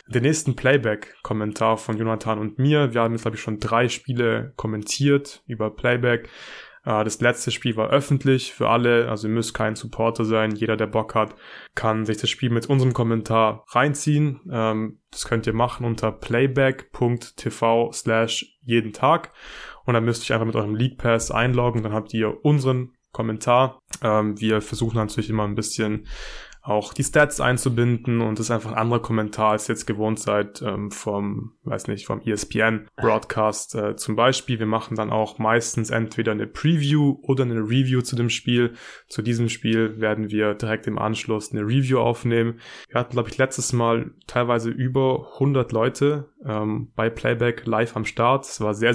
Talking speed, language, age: 175 wpm, German, 20-39